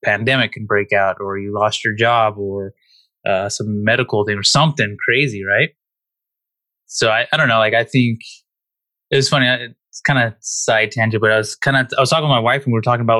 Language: English